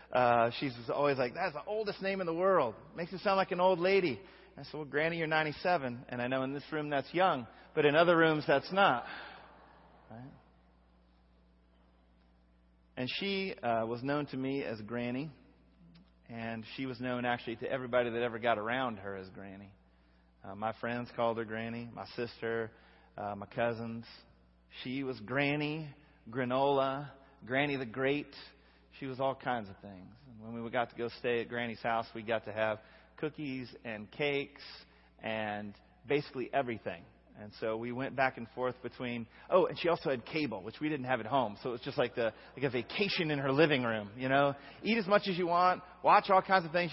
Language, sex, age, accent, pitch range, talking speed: English, male, 30-49, American, 110-150 Hz, 195 wpm